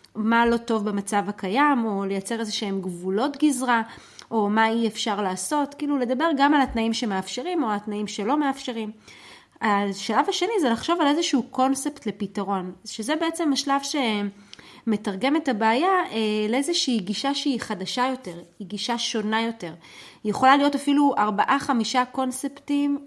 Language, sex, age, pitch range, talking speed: Hebrew, female, 30-49, 210-275 Hz, 140 wpm